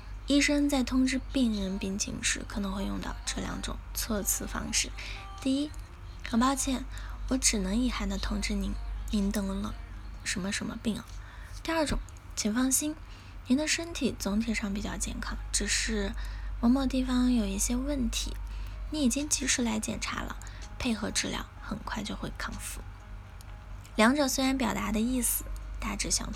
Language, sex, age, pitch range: Chinese, female, 10-29, 185-250 Hz